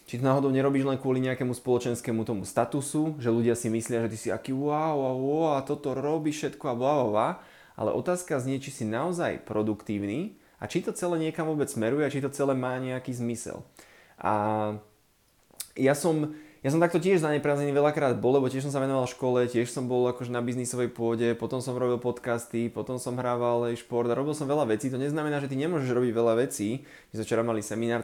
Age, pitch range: 20-39, 115-140 Hz